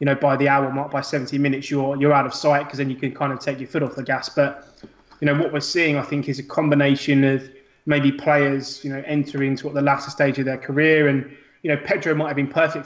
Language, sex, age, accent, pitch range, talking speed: English, male, 20-39, British, 135-145 Hz, 275 wpm